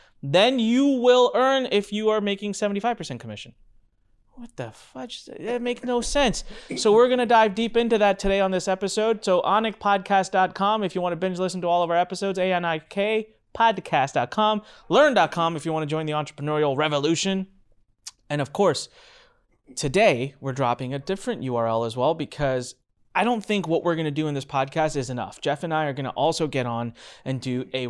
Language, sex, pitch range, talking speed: English, male, 135-200 Hz, 200 wpm